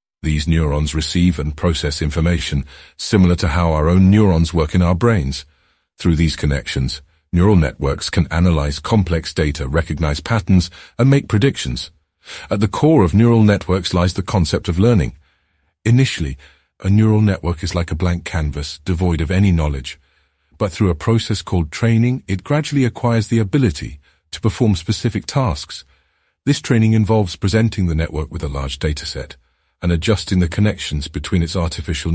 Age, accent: 50-69, British